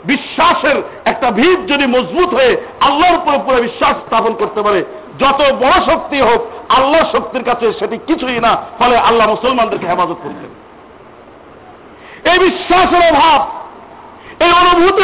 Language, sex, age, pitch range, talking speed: Bengali, male, 50-69, 245-350 Hz, 120 wpm